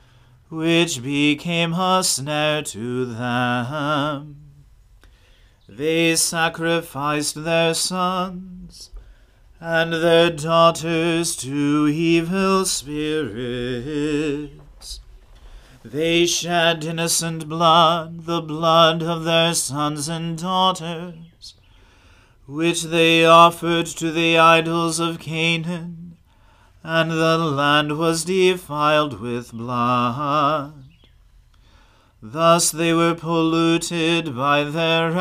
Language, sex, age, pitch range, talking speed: English, male, 40-59, 140-165 Hz, 80 wpm